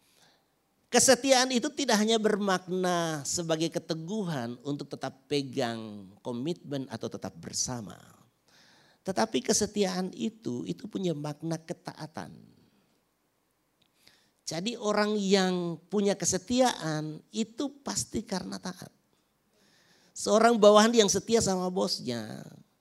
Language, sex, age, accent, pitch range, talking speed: Indonesian, male, 50-69, native, 120-200 Hz, 95 wpm